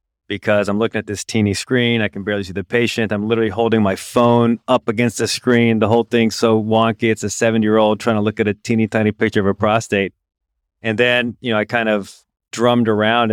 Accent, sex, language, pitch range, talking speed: American, male, English, 100-115 Hz, 225 wpm